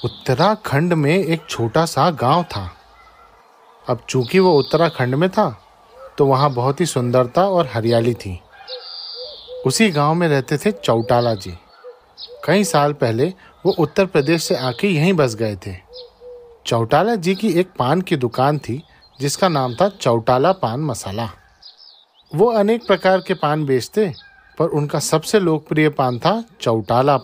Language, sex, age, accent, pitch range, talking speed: Hindi, male, 40-59, native, 125-180 Hz, 150 wpm